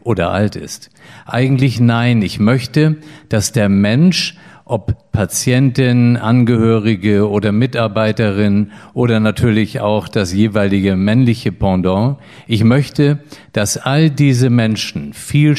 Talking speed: 110 wpm